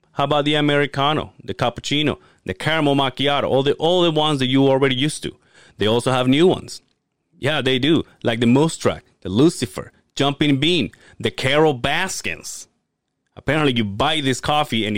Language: English